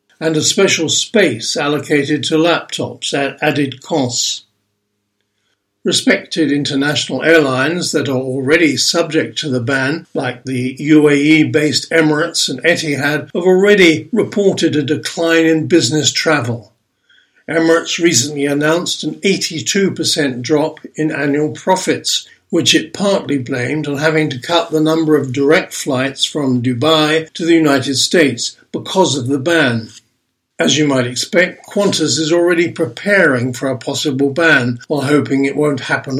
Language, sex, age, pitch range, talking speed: English, male, 60-79, 140-165 Hz, 140 wpm